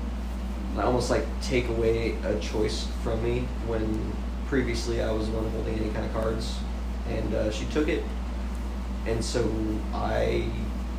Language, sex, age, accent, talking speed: English, male, 20-39, American, 155 wpm